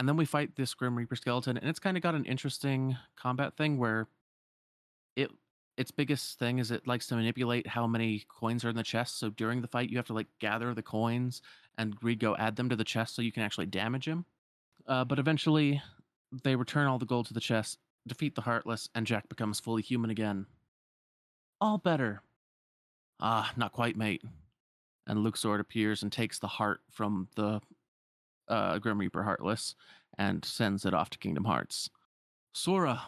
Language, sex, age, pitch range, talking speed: English, male, 30-49, 110-135 Hz, 190 wpm